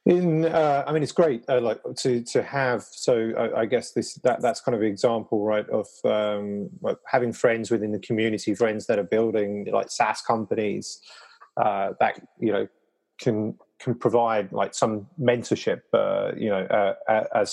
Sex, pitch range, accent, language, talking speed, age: male, 100-115 Hz, British, English, 185 wpm, 30-49